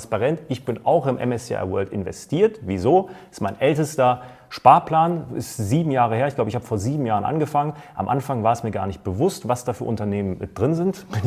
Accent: German